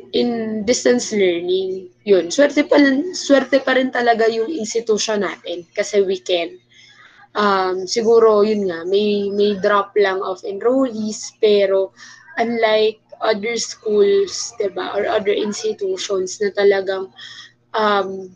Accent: Filipino